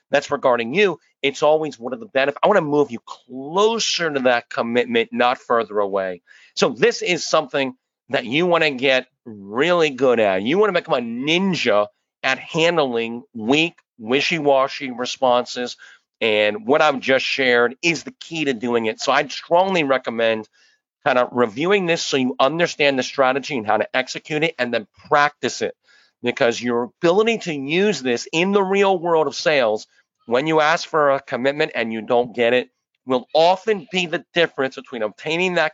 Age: 40-59